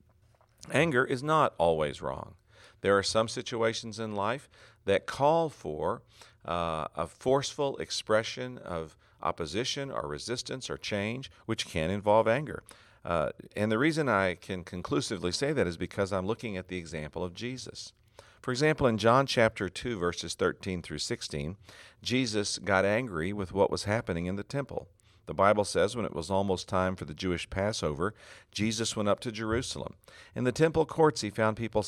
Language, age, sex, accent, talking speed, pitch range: English, 50-69, male, American, 170 wpm, 95-120 Hz